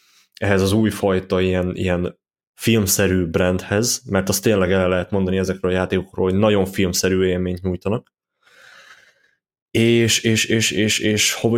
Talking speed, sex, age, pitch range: 145 wpm, male, 20-39, 95-110 Hz